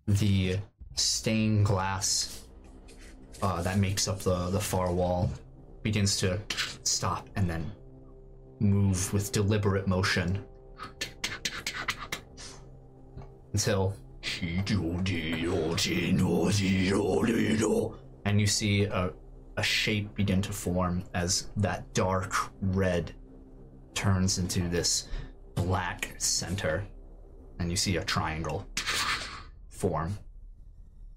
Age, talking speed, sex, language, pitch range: 20-39, 85 wpm, male, English, 80-100 Hz